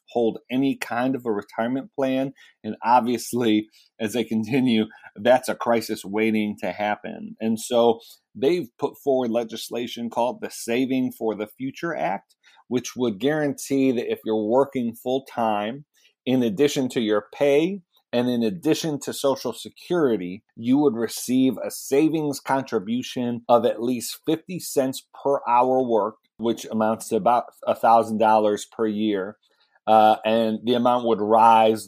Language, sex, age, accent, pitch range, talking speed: English, male, 40-59, American, 110-130 Hz, 145 wpm